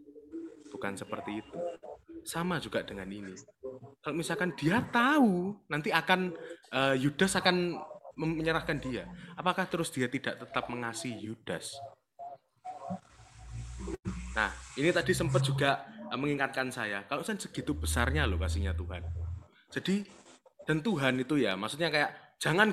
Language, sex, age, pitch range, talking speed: Indonesian, male, 20-39, 130-205 Hz, 125 wpm